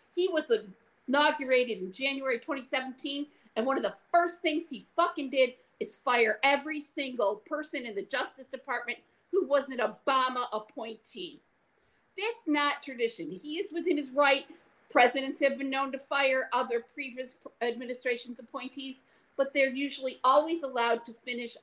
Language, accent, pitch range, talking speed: English, American, 225-290 Hz, 150 wpm